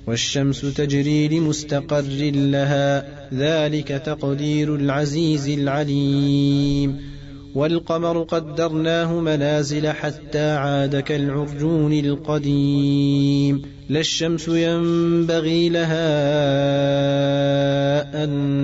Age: 20-39